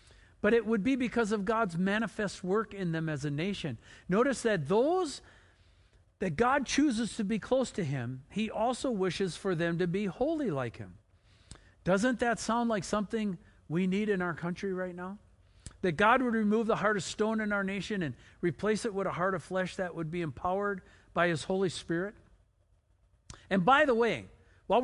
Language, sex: English, male